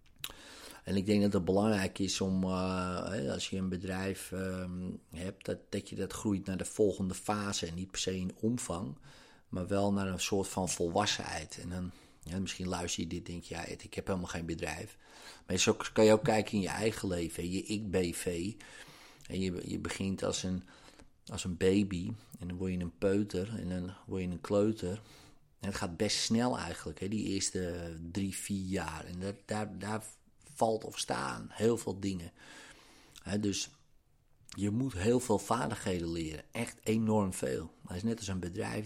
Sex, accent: male, Dutch